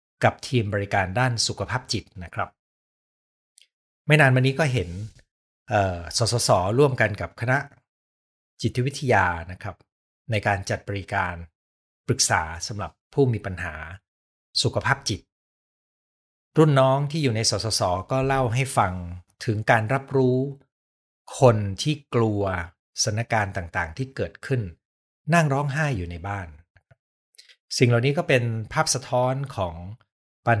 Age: 60-79